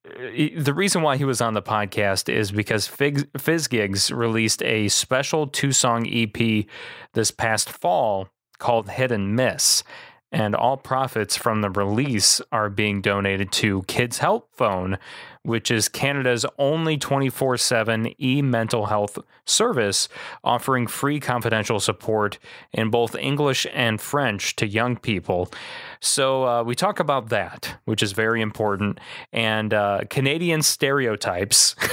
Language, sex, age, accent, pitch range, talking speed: English, male, 20-39, American, 105-135 Hz, 130 wpm